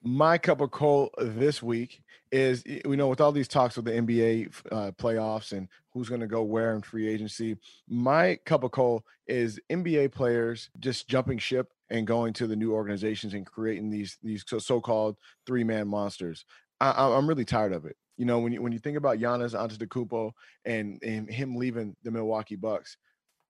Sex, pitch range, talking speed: male, 110-125 Hz, 185 wpm